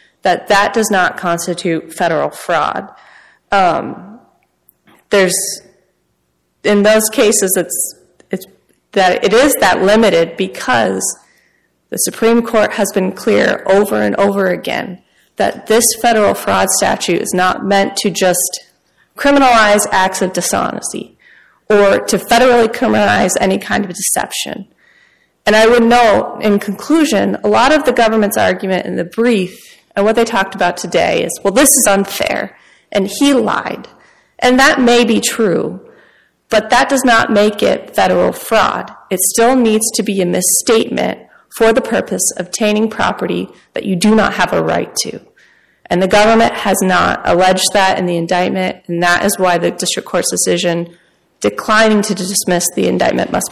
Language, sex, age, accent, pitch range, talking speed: English, female, 30-49, American, 185-225 Hz, 155 wpm